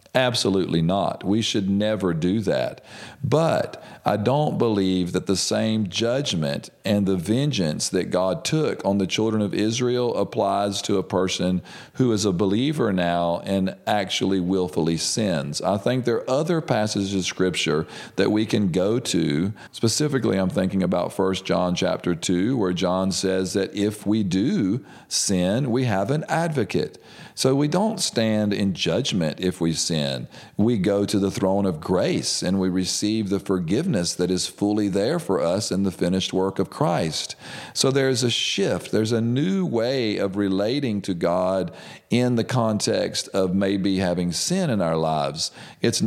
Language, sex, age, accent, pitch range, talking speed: English, male, 40-59, American, 90-110 Hz, 170 wpm